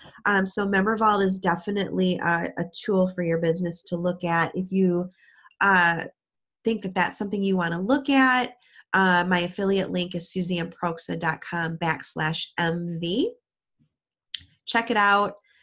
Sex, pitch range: female, 170-200 Hz